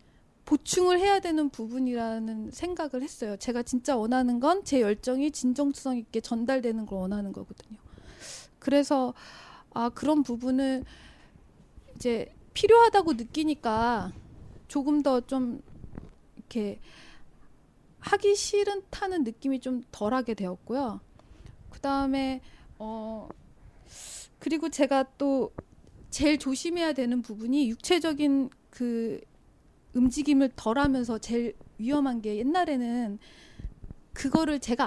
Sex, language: female, Korean